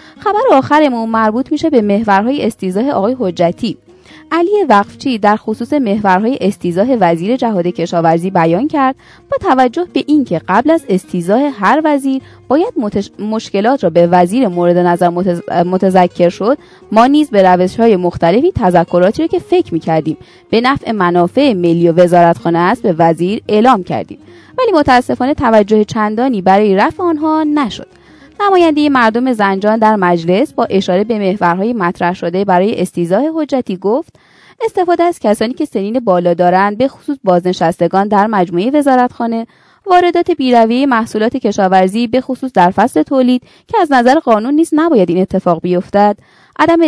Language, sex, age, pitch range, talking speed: Persian, female, 20-39, 185-275 Hz, 150 wpm